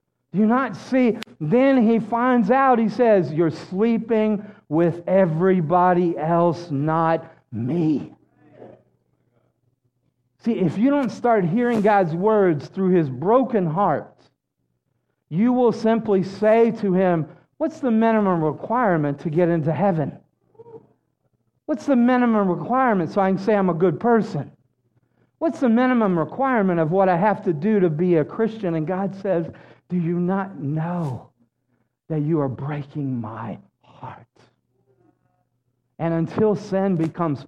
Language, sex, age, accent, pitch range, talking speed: English, male, 50-69, American, 145-210 Hz, 135 wpm